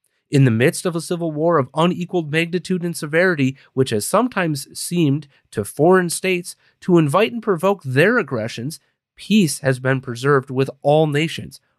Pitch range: 135-185 Hz